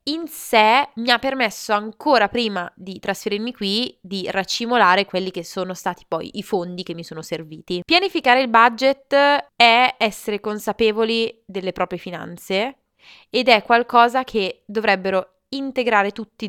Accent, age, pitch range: native, 20-39, 175-220 Hz